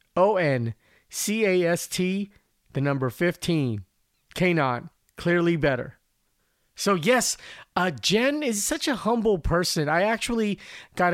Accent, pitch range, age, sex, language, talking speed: American, 135-175 Hz, 30-49, male, English, 100 wpm